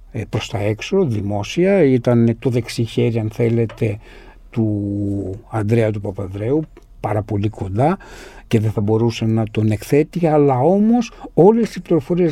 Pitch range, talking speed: 120-165 Hz, 135 wpm